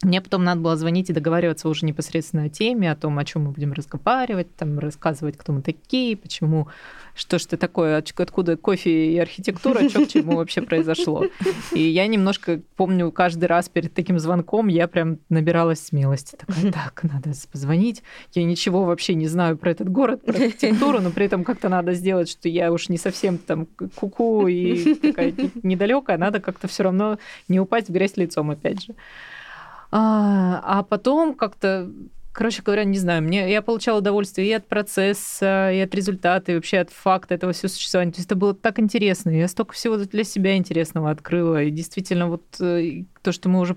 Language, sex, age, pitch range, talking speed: Russian, female, 20-39, 165-195 Hz, 185 wpm